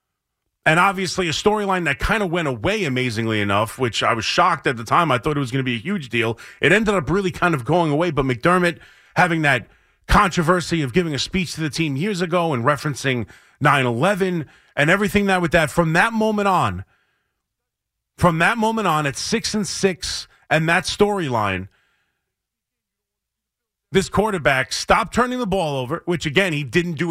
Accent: American